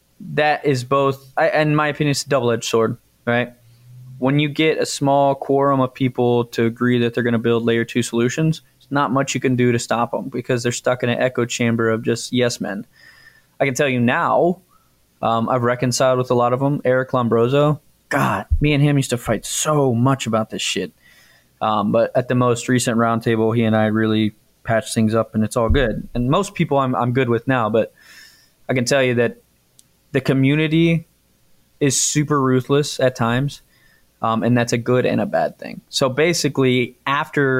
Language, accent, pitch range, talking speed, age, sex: English, American, 115-140 Hz, 205 wpm, 20-39, male